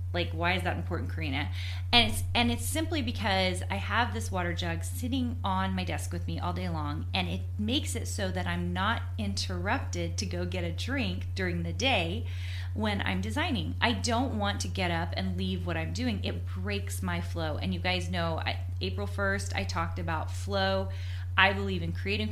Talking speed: 205 wpm